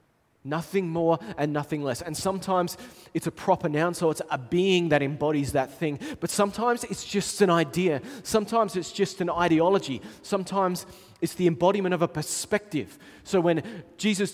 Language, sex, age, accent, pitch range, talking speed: English, male, 20-39, Australian, 135-185 Hz, 165 wpm